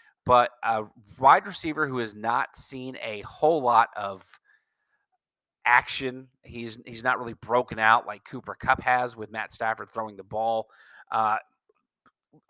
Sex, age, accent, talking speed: male, 30-49, American, 145 wpm